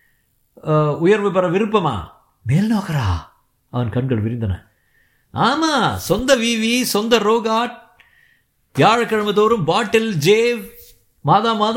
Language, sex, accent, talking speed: Tamil, male, native, 85 wpm